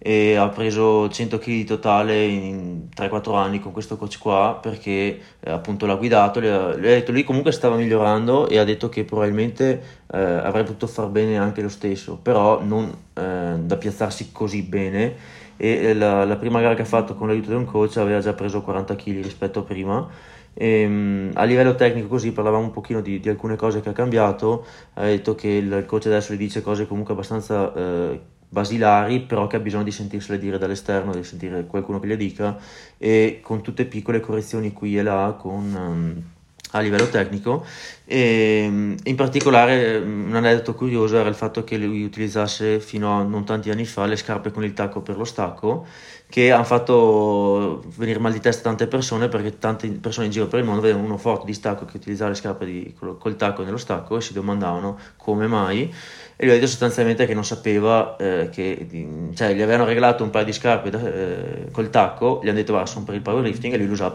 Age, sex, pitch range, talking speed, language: 30-49, male, 100-115 Hz, 205 wpm, Italian